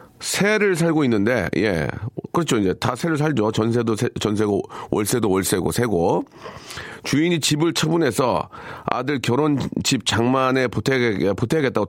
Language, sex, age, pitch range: Korean, male, 40-59, 110-155 Hz